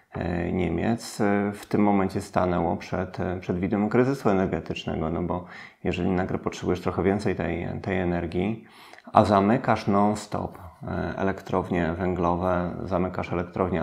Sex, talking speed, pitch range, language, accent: male, 115 wpm, 90-100 Hz, Polish, native